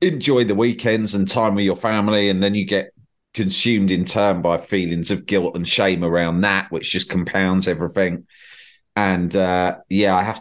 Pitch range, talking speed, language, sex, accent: 85-105 Hz, 185 wpm, English, male, British